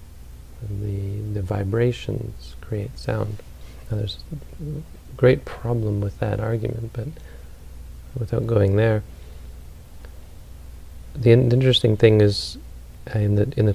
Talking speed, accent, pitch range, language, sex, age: 100 wpm, American, 70-115 Hz, English, male, 40-59